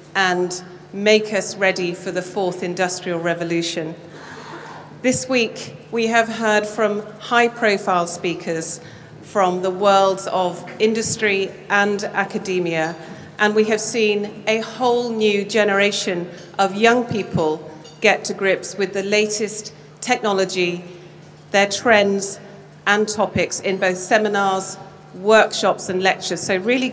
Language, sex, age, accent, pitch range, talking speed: English, female, 40-59, British, 175-215 Hz, 125 wpm